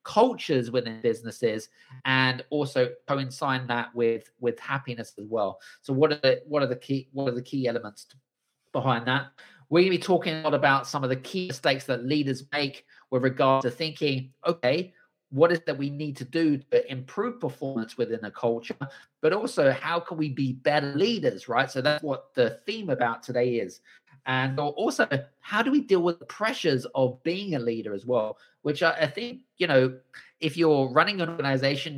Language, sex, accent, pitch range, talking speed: English, male, British, 125-155 Hz, 195 wpm